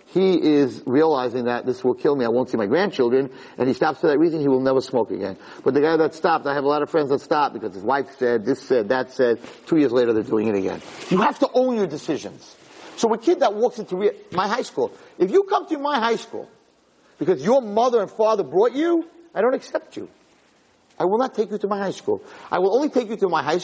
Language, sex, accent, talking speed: English, male, American, 260 wpm